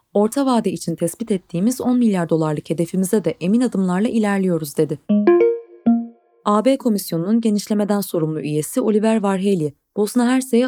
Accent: native